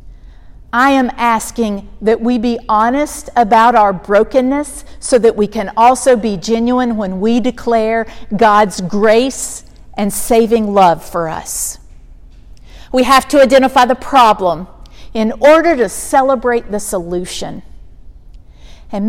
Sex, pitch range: female, 205-270 Hz